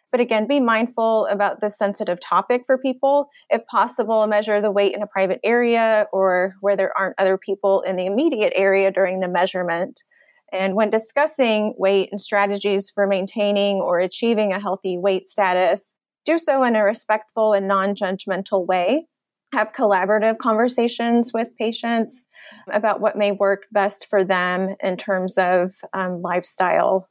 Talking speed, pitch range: 155 wpm, 190-220 Hz